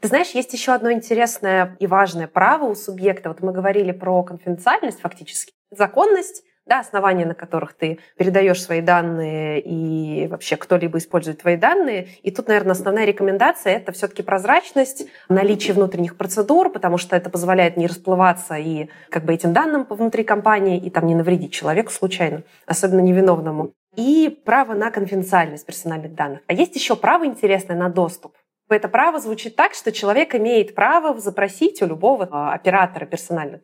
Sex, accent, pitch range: female, native, 180-230 Hz